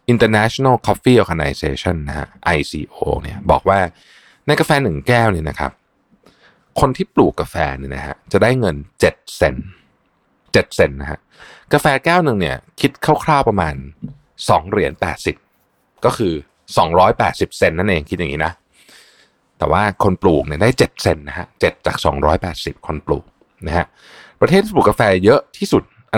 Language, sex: Thai, male